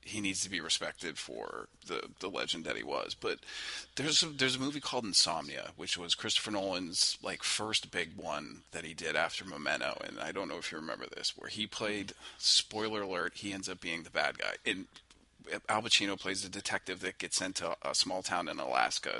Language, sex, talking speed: English, male, 215 wpm